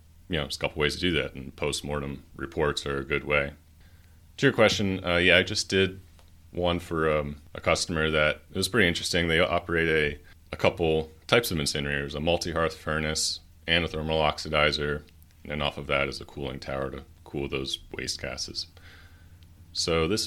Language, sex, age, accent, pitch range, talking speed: English, male, 30-49, American, 75-85 Hz, 190 wpm